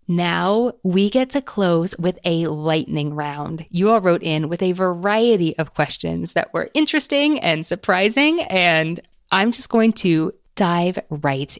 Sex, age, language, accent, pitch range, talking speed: female, 20-39, English, American, 155-200 Hz, 155 wpm